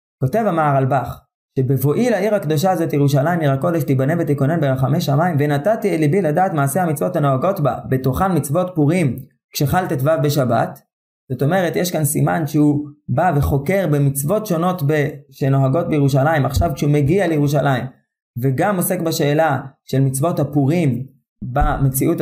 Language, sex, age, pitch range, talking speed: Hebrew, male, 20-39, 140-185 Hz, 140 wpm